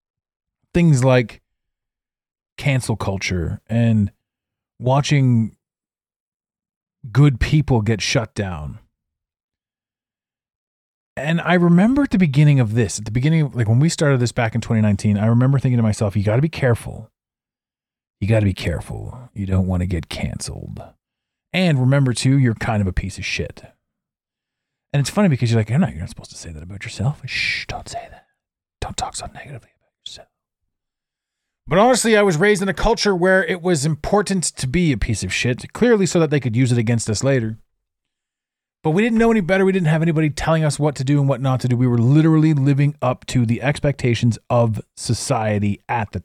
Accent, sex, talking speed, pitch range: American, male, 190 wpm, 110-150 Hz